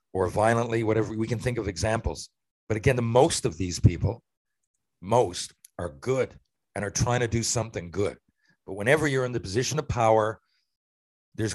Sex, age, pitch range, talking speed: male, 50-69, 95-125 Hz, 175 wpm